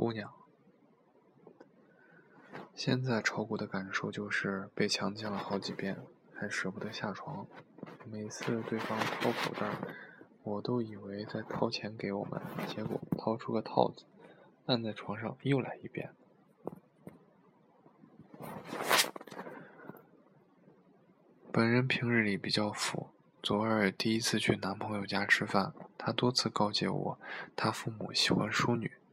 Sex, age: male, 20-39